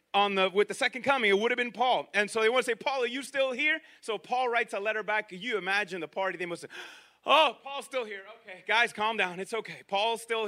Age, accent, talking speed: 30-49, American, 265 wpm